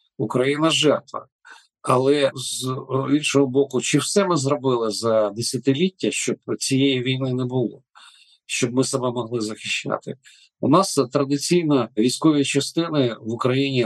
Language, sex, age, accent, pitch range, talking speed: Ukrainian, male, 50-69, native, 115-145 Hz, 130 wpm